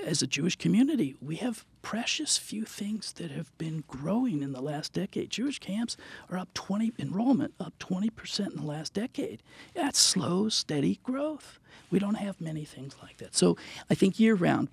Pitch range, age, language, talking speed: 130-175 Hz, 50-69, English, 180 wpm